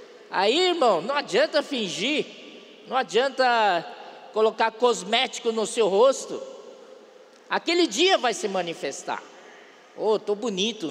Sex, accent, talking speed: male, Brazilian, 110 wpm